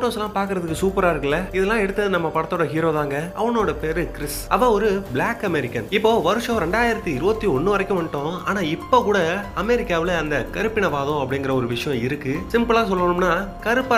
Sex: male